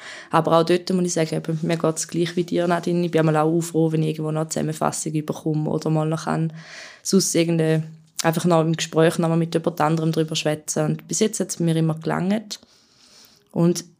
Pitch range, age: 160-180 Hz, 20-39